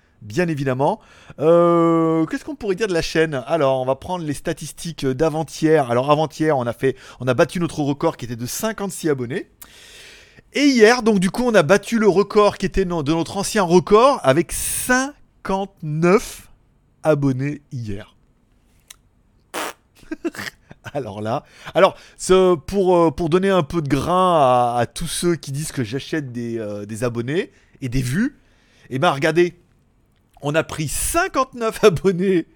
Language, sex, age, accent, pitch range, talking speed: French, male, 30-49, French, 130-200 Hz, 155 wpm